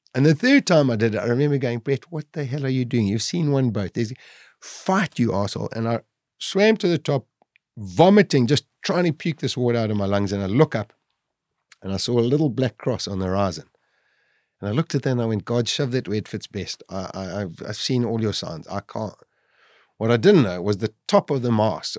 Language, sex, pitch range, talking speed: English, male, 100-135 Hz, 240 wpm